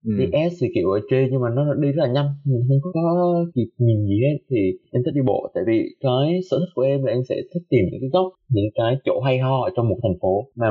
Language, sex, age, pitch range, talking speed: Vietnamese, male, 20-39, 110-140 Hz, 290 wpm